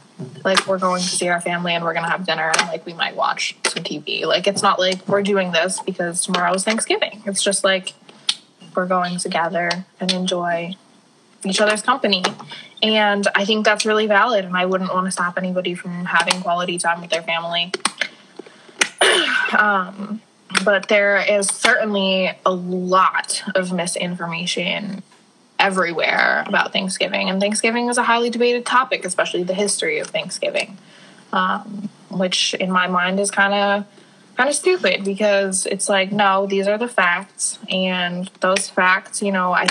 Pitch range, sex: 185-210 Hz, female